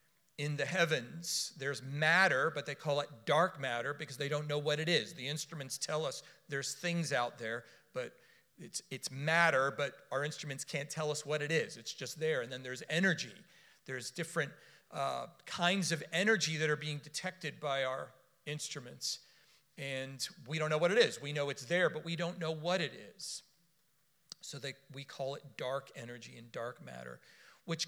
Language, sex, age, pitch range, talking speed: English, male, 40-59, 140-180 Hz, 190 wpm